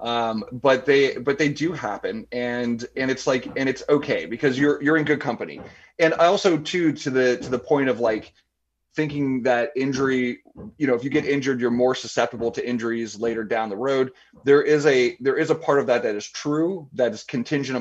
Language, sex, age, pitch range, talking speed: English, male, 30-49, 115-145 Hz, 215 wpm